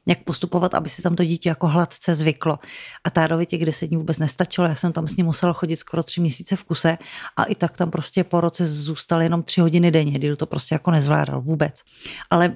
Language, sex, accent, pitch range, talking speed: Czech, female, native, 160-180 Hz, 230 wpm